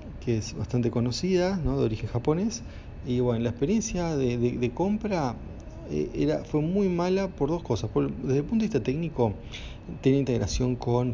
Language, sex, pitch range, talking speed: Spanish, male, 110-135 Hz, 185 wpm